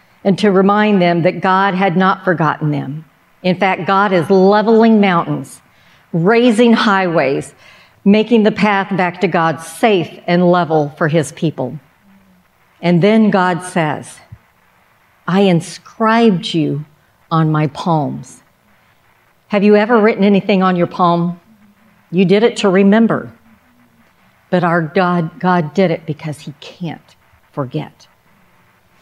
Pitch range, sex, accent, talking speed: 155-200 Hz, female, American, 130 wpm